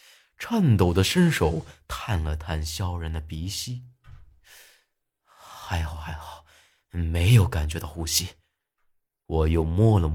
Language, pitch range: Chinese, 80-125 Hz